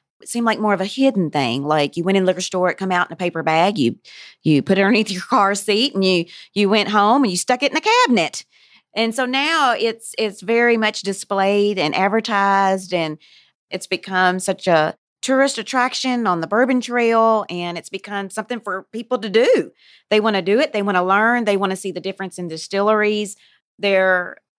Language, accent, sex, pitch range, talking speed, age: English, American, female, 180-225 Hz, 215 wpm, 30-49